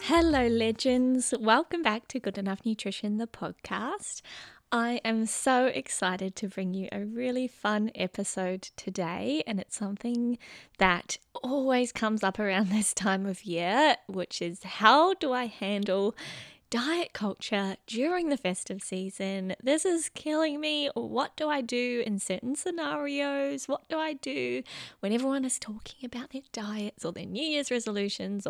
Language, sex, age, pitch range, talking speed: English, female, 20-39, 190-260 Hz, 155 wpm